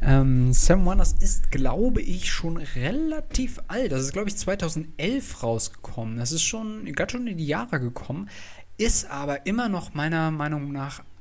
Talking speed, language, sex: 160 wpm, German, male